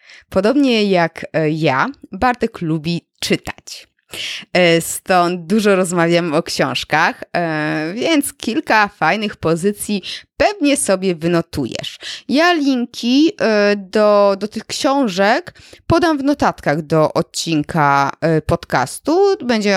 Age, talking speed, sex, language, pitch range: 20-39, 95 wpm, female, Polish, 160-230 Hz